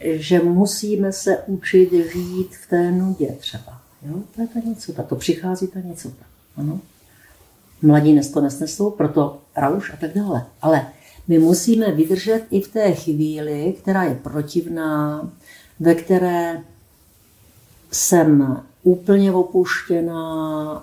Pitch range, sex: 145-180 Hz, female